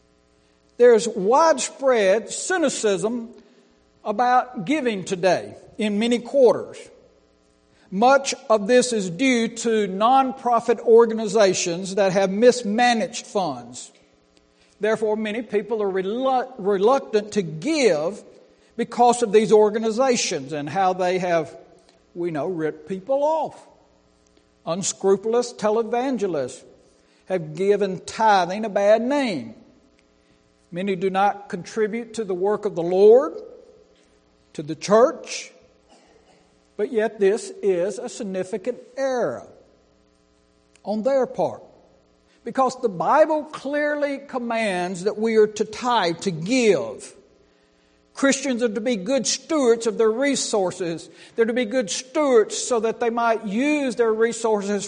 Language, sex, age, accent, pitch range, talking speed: English, male, 60-79, American, 180-250 Hz, 115 wpm